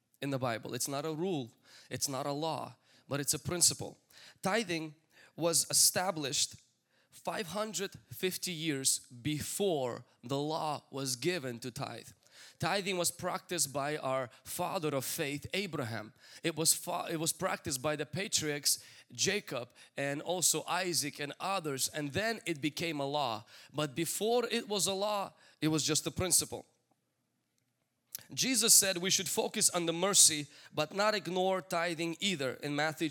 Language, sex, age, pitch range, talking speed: English, male, 20-39, 140-185 Hz, 150 wpm